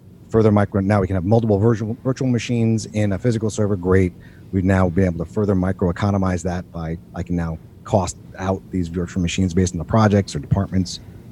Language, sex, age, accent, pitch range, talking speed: English, male, 30-49, American, 90-110 Hz, 200 wpm